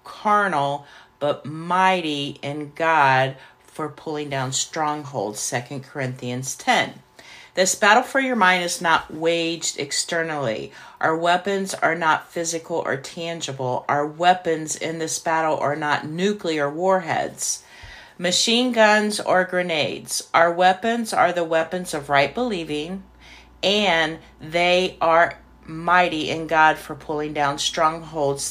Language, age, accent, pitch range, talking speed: English, 40-59, American, 145-185 Hz, 125 wpm